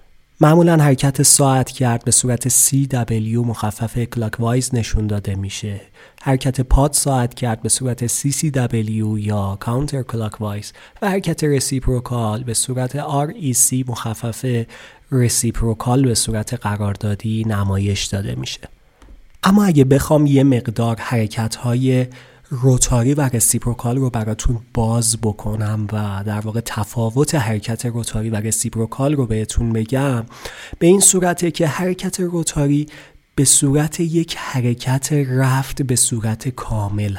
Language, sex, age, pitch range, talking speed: Persian, male, 30-49, 115-145 Hz, 120 wpm